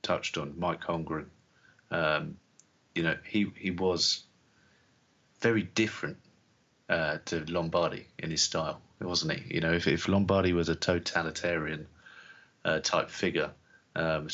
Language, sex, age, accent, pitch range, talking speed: English, male, 30-49, British, 80-95 Hz, 135 wpm